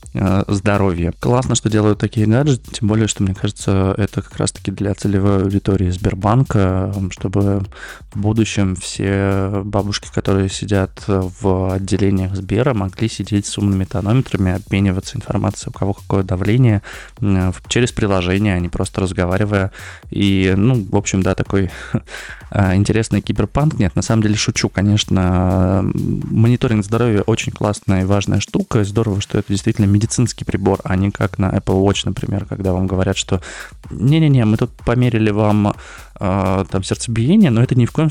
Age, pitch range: 20-39, 95-110 Hz